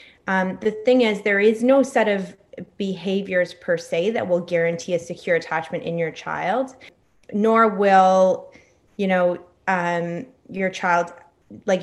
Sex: female